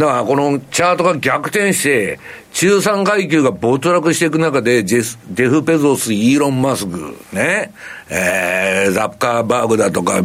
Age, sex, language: 60-79, male, Japanese